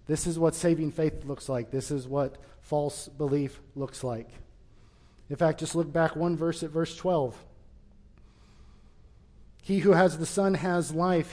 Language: English